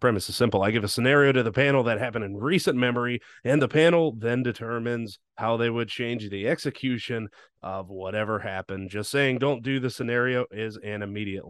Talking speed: 200 wpm